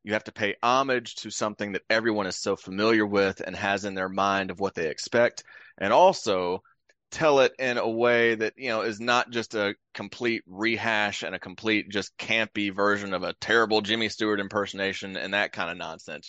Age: 20-39